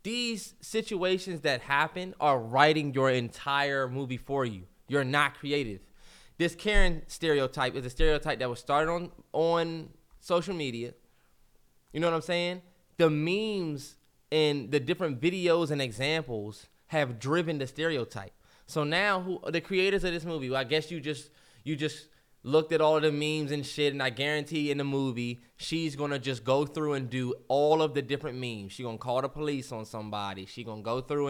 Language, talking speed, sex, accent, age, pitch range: English, 185 wpm, male, American, 20-39, 125-160 Hz